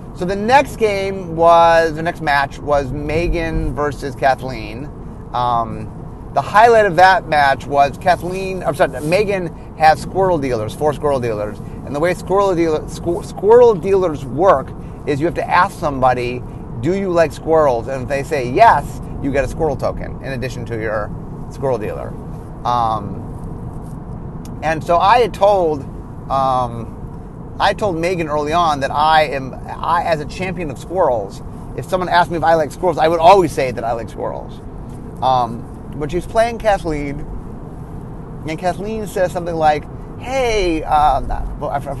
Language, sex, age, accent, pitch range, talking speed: English, male, 30-49, American, 140-185 Hz, 160 wpm